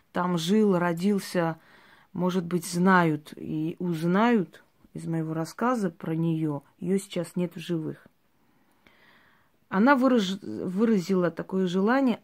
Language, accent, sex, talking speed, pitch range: Russian, native, female, 115 wpm, 170-215 Hz